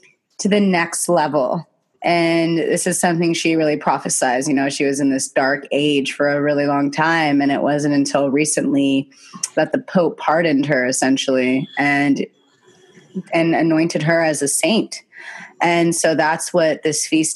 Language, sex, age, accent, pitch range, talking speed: English, female, 30-49, American, 140-170 Hz, 165 wpm